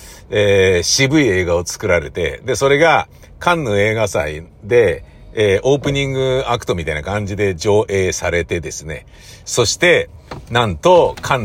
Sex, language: male, Japanese